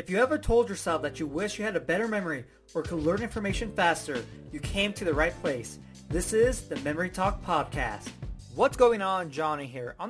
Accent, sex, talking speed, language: American, male, 215 wpm, English